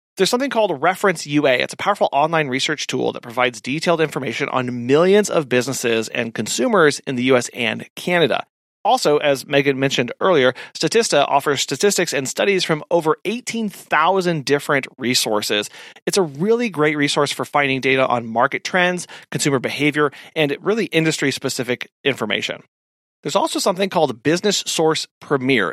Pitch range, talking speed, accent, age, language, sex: 125-170 Hz, 150 wpm, American, 30-49, English, male